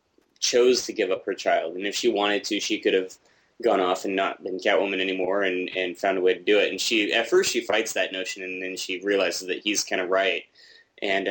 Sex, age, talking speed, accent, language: male, 20-39, 250 wpm, American, English